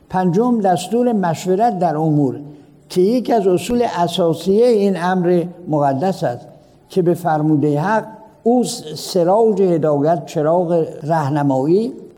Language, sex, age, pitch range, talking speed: Persian, male, 60-79, 155-200 Hz, 115 wpm